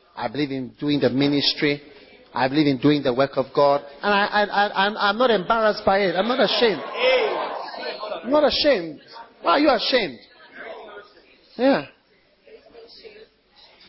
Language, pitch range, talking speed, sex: English, 165-235 Hz, 150 wpm, male